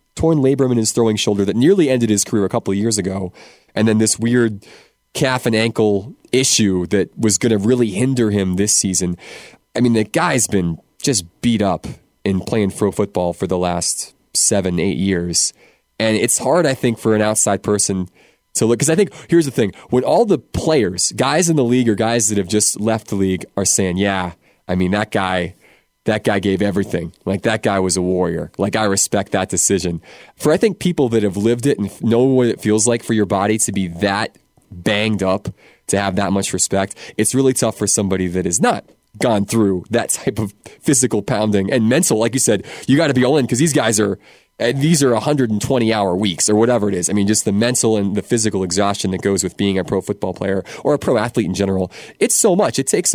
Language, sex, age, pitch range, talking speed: English, male, 20-39, 95-120 Hz, 225 wpm